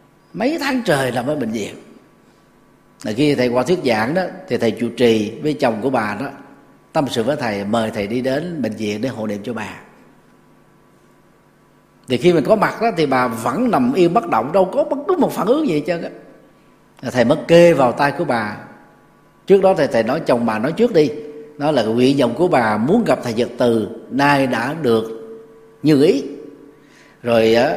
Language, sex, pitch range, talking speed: Vietnamese, male, 120-175 Hz, 205 wpm